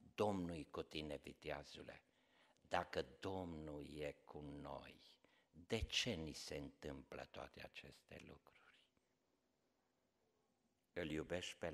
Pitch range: 80-105 Hz